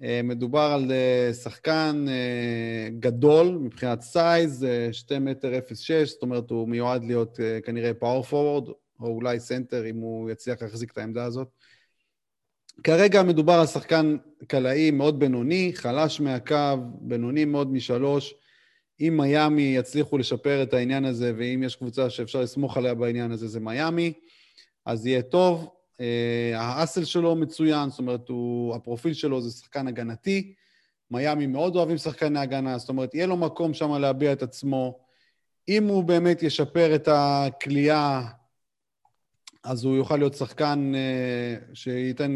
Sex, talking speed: male, 140 wpm